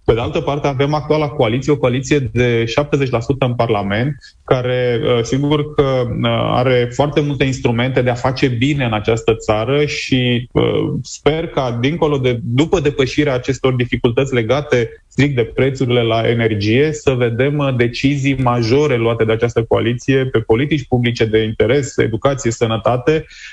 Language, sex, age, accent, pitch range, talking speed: Romanian, male, 20-39, native, 120-145 Hz, 145 wpm